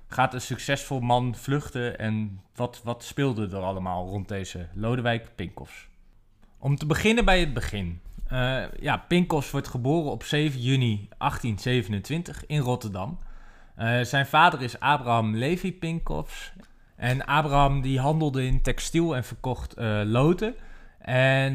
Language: Dutch